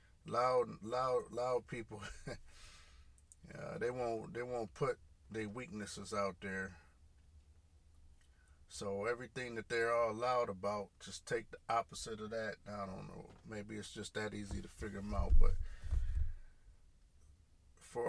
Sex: male